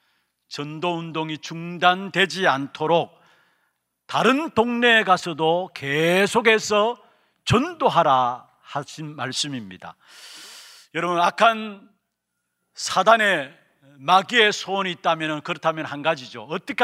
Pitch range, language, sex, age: 145-195 Hz, Korean, male, 40-59